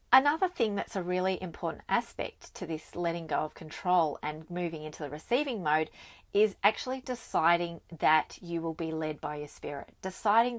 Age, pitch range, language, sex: 30-49, 160-205 Hz, English, female